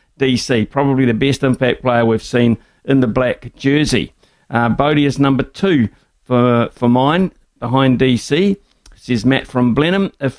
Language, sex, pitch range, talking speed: English, male, 120-140 Hz, 155 wpm